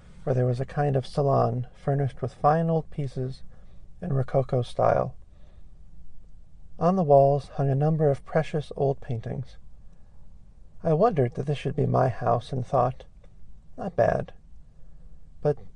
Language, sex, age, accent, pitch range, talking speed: English, male, 40-59, American, 100-150 Hz, 145 wpm